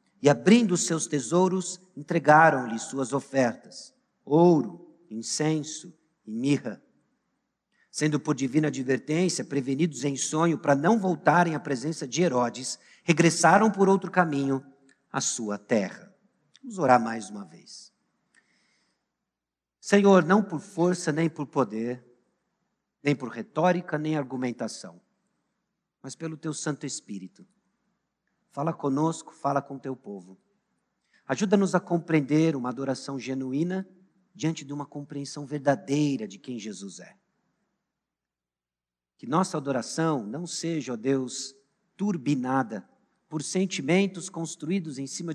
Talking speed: 120 wpm